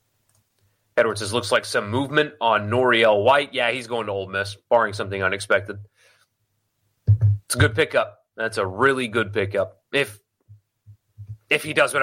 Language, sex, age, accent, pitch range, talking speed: English, male, 30-49, American, 105-180 Hz, 160 wpm